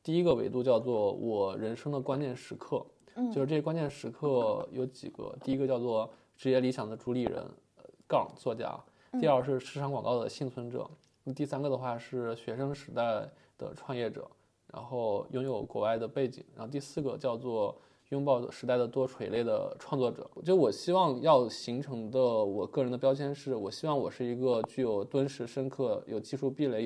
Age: 20-39